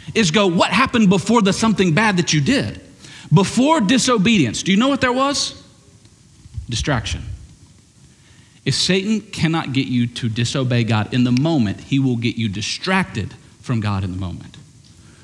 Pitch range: 120-170 Hz